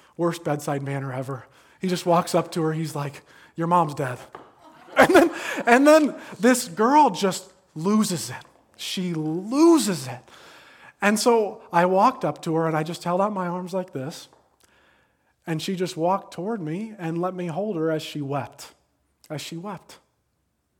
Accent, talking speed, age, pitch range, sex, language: American, 170 wpm, 30-49, 155-205 Hz, male, English